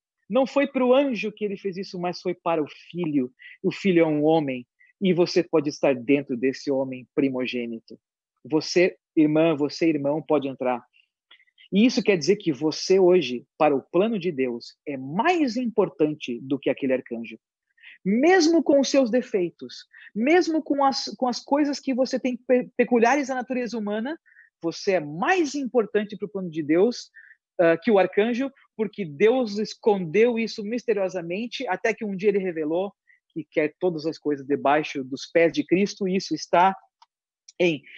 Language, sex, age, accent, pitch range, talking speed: Portuguese, male, 40-59, Brazilian, 155-230 Hz, 170 wpm